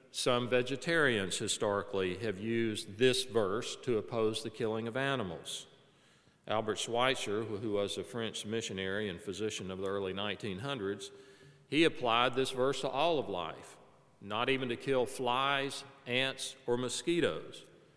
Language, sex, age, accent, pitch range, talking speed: English, male, 50-69, American, 115-150 Hz, 140 wpm